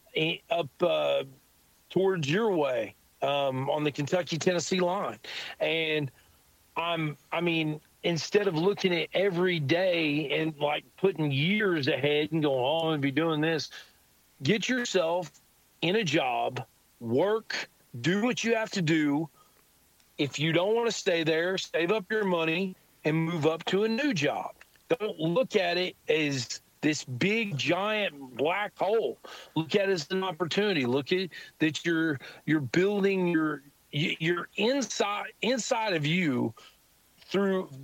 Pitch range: 145-190 Hz